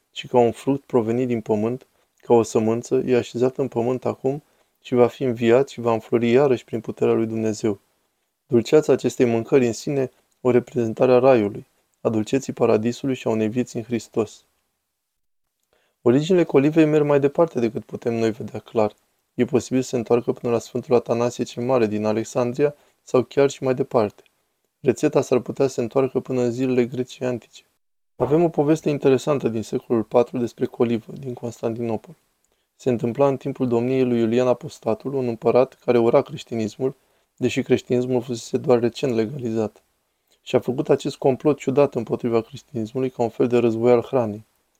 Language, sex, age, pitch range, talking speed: Romanian, male, 20-39, 115-130 Hz, 175 wpm